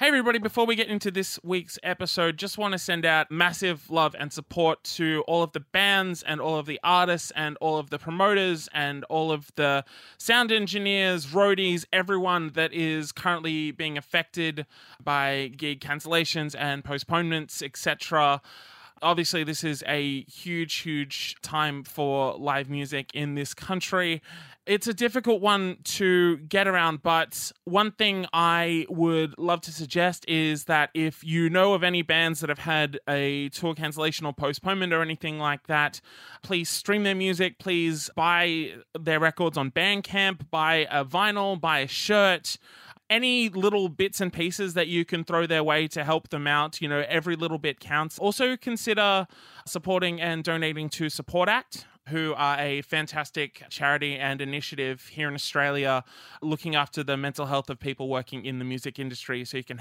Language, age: English, 20-39